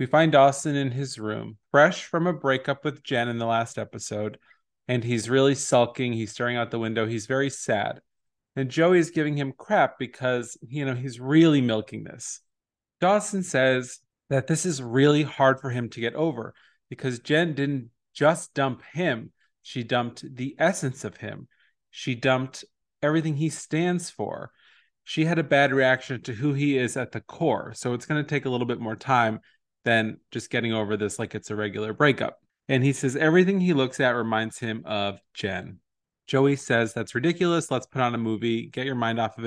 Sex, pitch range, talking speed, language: male, 115-140 Hz, 195 wpm, English